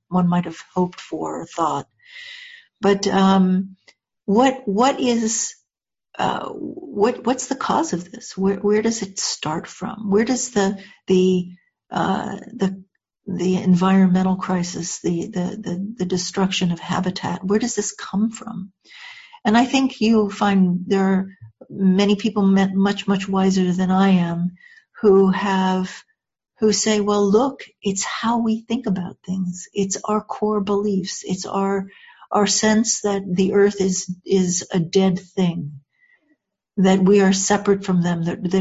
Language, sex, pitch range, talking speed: English, female, 185-215 Hz, 150 wpm